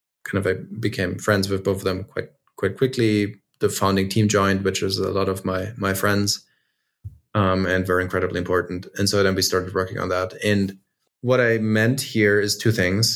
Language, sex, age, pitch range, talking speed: English, male, 20-39, 95-110 Hz, 205 wpm